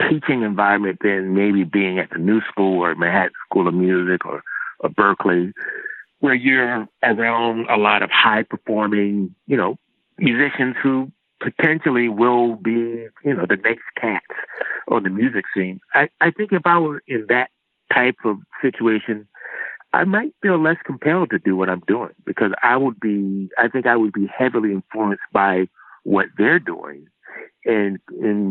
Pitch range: 95-115 Hz